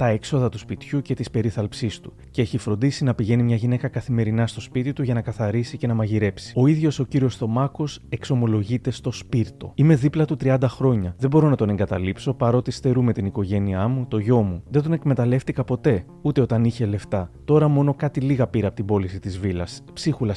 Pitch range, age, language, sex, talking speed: 110-140 Hz, 30-49, Greek, male, 205 wpm